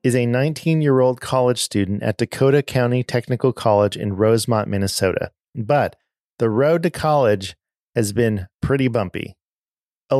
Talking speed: 145 wpm